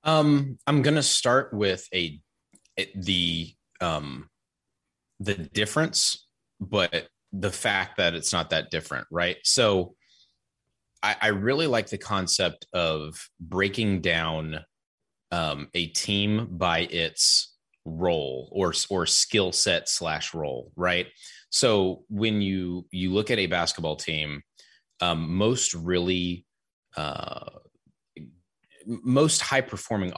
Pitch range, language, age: 85-105 Hz, English, 30-49